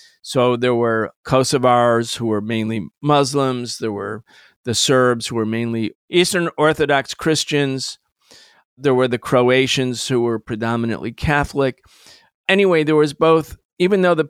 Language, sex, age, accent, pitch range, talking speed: English, male, 50-69, American, 130-155 Hz, 140 wpm